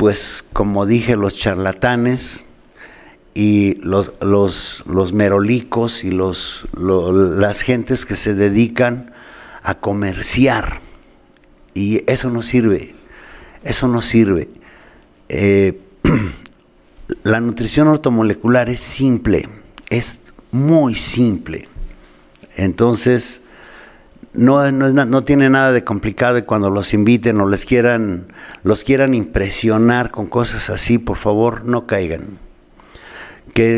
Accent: Mexican